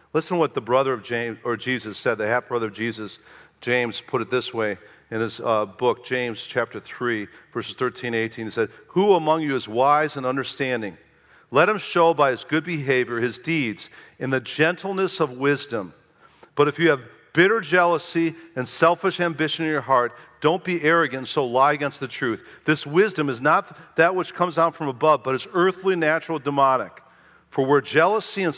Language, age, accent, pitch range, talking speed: English, 50-69, American, 125-165 Hz, 195 wpm